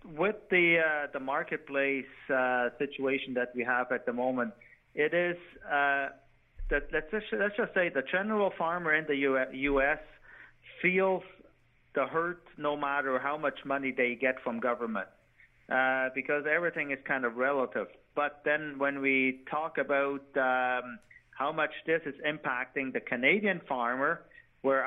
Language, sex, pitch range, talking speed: English, male, 130-155 Hz, 150 wpm